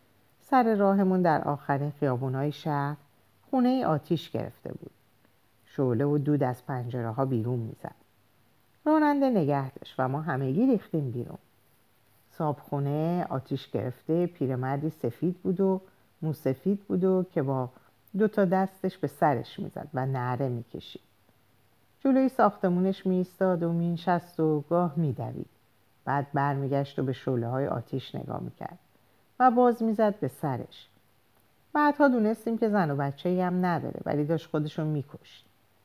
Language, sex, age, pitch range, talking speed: Persian, female, 50-69, 130-185 Hz, 140 wpm